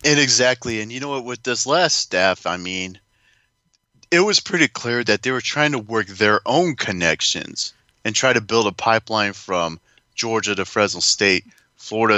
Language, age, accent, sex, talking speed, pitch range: English, 30-49, American, male, 180 wpm, 100-130 Hz